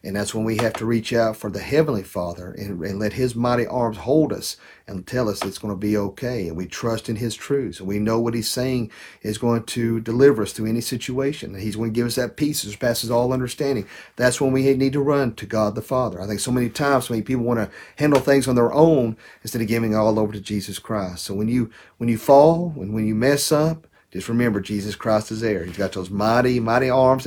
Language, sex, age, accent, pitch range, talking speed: English, male, 50-69, American, 105-135 Hz, 260 wpm